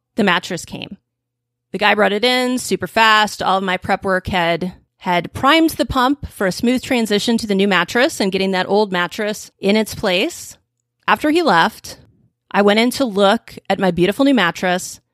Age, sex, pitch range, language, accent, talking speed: 30-49, female, 170-225 Hz, English, American, 195 wpm